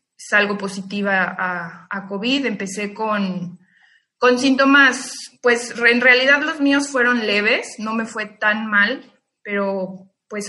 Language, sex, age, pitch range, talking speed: Spanish, female, 20-39, 200-235 Hz, 130 wpm